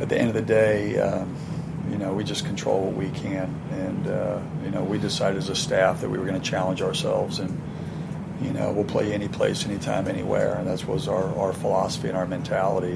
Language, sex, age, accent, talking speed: English, male, 40-59, American, 225 wpm